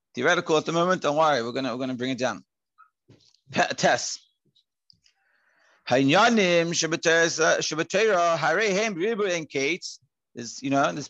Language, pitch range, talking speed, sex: English, 165-215 Hz, 90 wpm, male